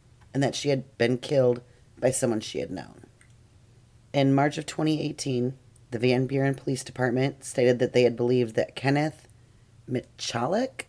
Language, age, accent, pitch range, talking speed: English, 30-49, American, 115-140 Hz, 155 wpm